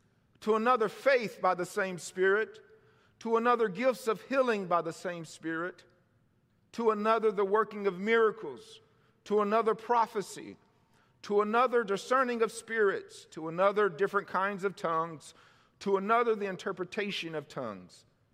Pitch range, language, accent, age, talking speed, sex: 150-225 Hz, English, American, 50-69, 135 wpm, male